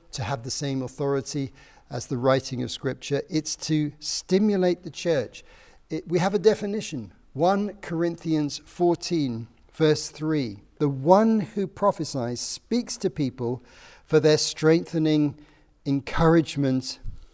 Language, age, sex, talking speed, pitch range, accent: English, 50-69, male, 120 wpm, 130-175 Hz, British